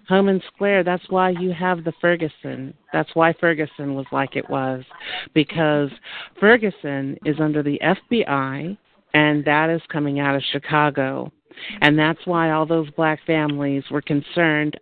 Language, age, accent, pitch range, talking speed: English, 50-69, American, 145-185 Hz, 155 wpm